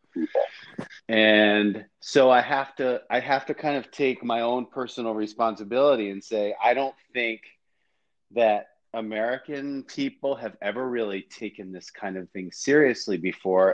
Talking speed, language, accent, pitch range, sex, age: 145 wpm, English, American, 100-125 Hz, male, 30-49